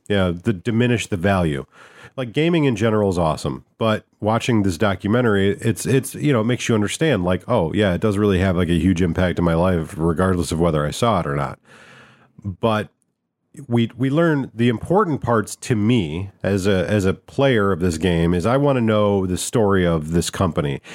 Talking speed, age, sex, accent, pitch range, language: 205 wpm, 40-59, male, American, 90-115 Hz, English